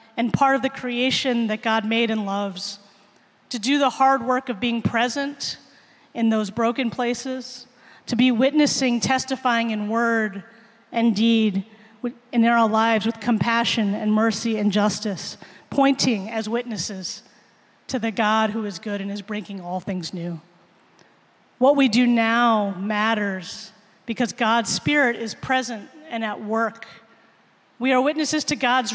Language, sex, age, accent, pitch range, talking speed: English, female, 30-49, American, 210-245 Hz, 150 wpm